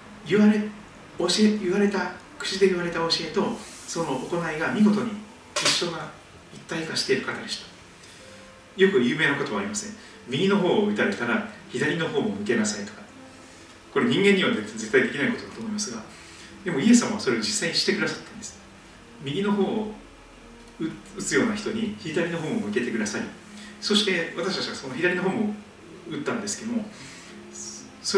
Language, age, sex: Japanese, 40-59, male